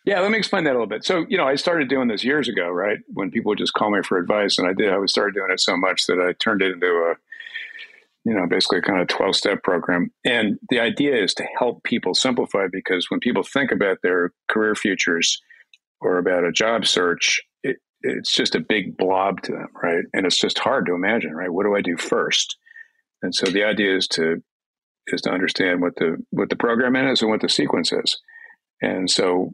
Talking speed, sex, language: 230 wpm, male, English